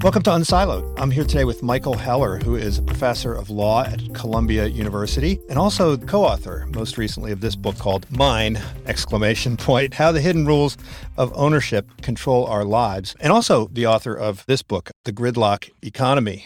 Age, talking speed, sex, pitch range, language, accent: 50-69, 180 wpm, male, 100-130 Hz, English, American